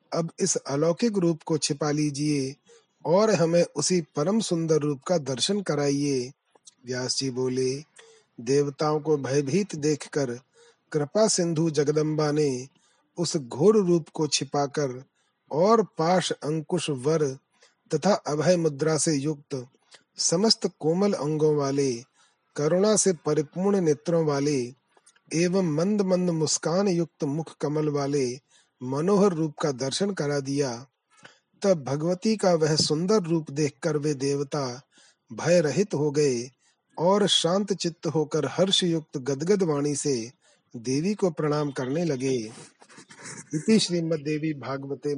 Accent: native